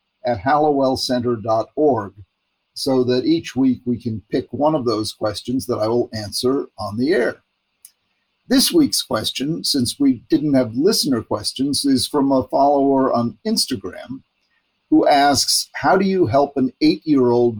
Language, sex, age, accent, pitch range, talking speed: English, male, 50-69, American, 120-155 Hz, 145 wpm